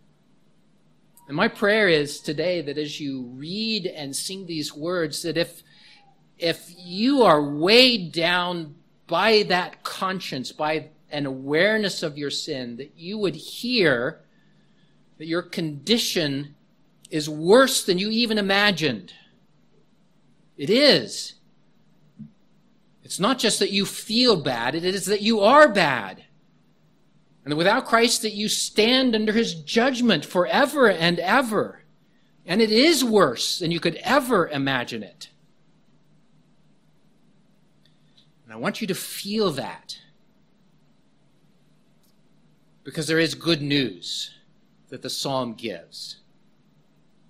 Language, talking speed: English, 120 wpm